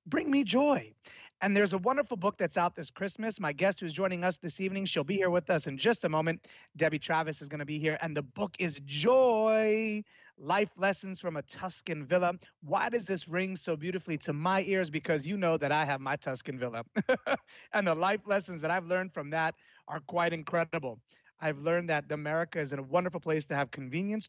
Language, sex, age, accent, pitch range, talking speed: English, male, 30-49, American, 145-190 Hz, 215 wpm